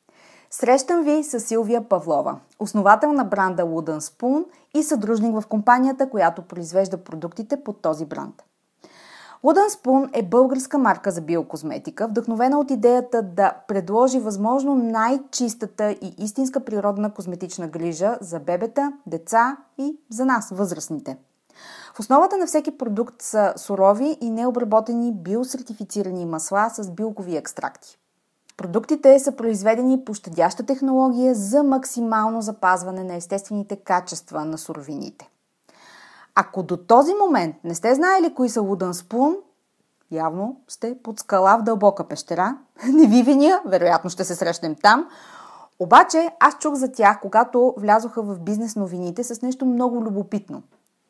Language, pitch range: Bulgarian, 190-260 Hz